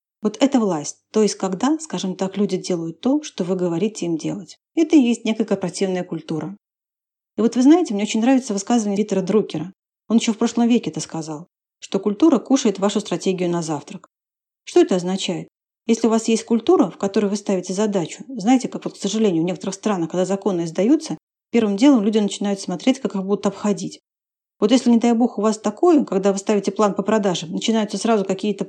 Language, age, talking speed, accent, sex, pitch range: Russian, 40-59, 200 wpm, native, female, 185-235 Hz